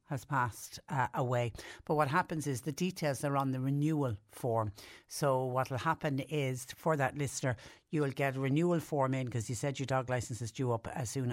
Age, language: 60-79, English